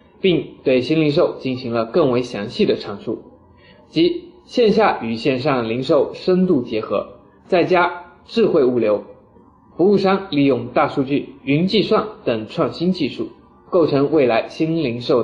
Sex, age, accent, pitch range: male, 20-39, native, 130-195 Hz